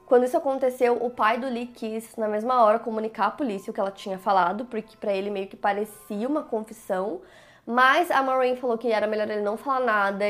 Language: Portuguese